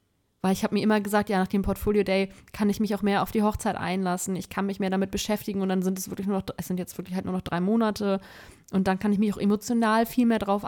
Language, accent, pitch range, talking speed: German, German, 190-240 Hz, 290 wpm